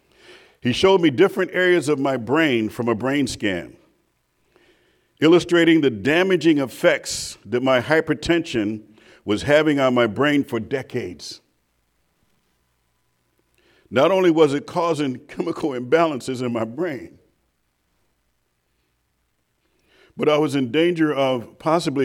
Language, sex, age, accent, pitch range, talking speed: English, male, 50-69, American, 105-150 Hz, 115 wpm